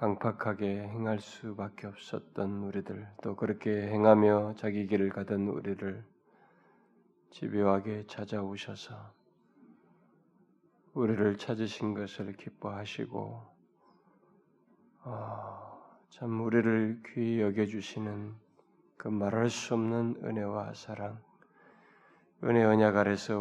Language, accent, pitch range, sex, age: Korean, native, 105-115 Hz, male, 20-39